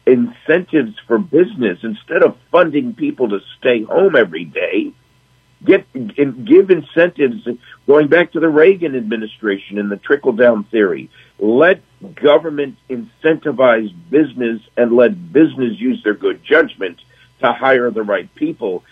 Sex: male